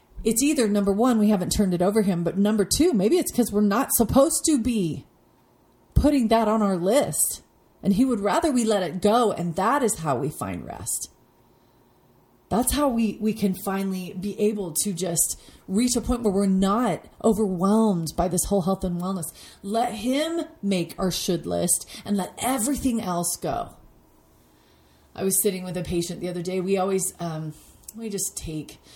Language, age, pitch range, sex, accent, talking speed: English, 30-49, 160-215 Hz, female, American, 185 wpm